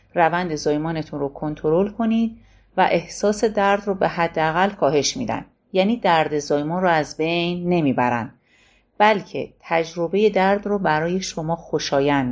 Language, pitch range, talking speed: Persian, 150-185 Hz, 130 wpm